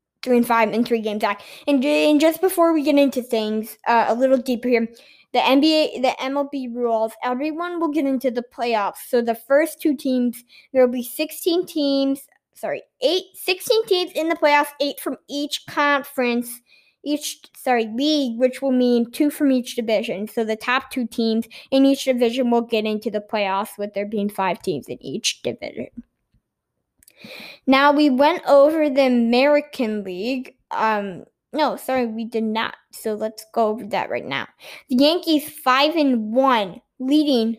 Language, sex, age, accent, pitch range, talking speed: English, female, 20-39, American, 230-290 Hz, 170 wpm